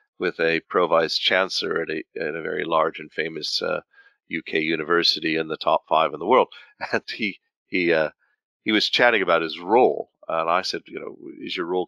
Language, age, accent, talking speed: English, 50-69, American, 205 wpm